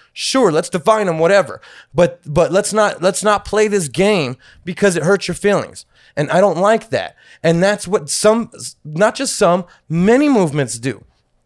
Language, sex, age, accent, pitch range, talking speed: English, male, 20-39, American, 165-245 Hz, 180 wpm